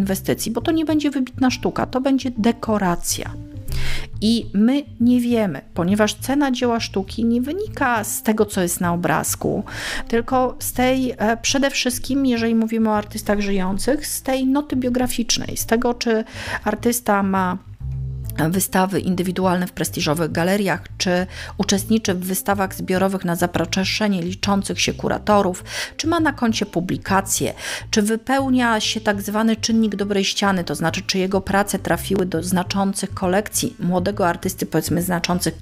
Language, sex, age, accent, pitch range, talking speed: Polish, female, 40-59, native, 175-235 Hz, 145 wpm